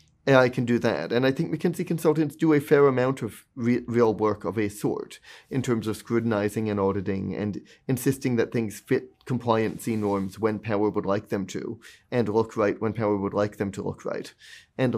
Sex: male